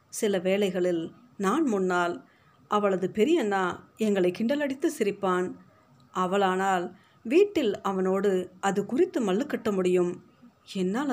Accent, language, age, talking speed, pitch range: native, Tamil, 50-69, 90 wpm, 185-225 Hz